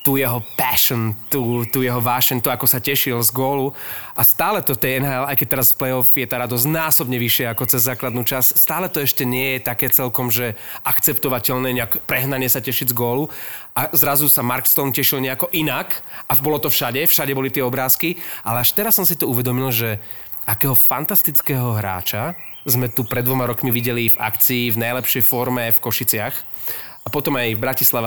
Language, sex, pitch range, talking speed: Slovak, male, 120-140 Hz, 190 wpm